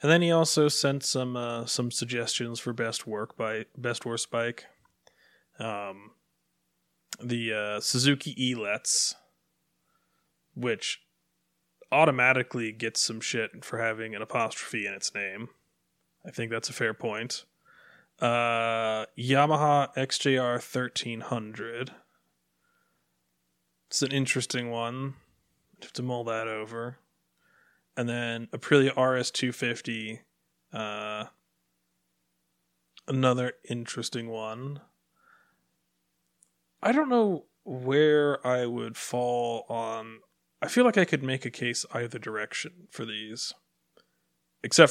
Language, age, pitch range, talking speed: English, 20-39, 105-130 Hz, 110 wpm